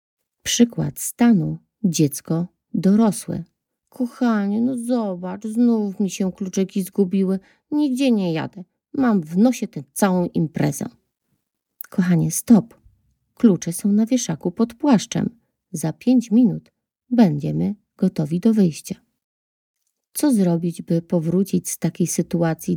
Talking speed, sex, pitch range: 115 wpm, female, 165-220 Hz